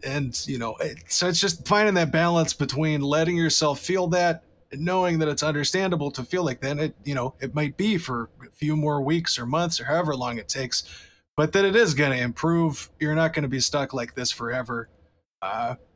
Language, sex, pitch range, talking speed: English, male, 130-160 Hz, 220 wpm